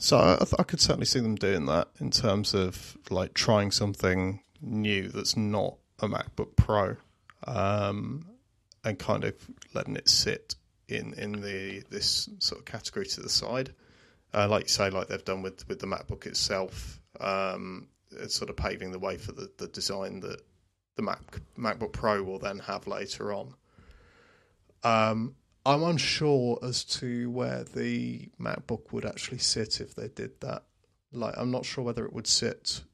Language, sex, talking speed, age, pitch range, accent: English, male, 170 wpm, 30-49, 95-115 Hz, British